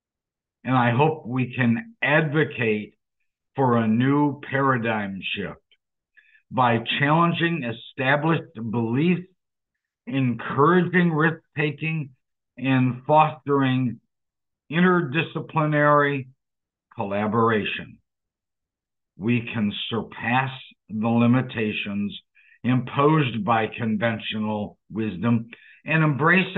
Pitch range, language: 115-150 Hz, English